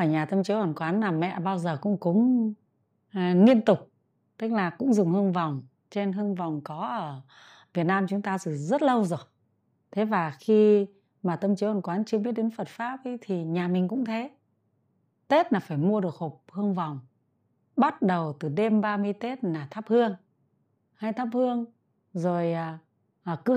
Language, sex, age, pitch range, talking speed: Vietnamese, female, 20-39, 175-240 Hz, 195 wpm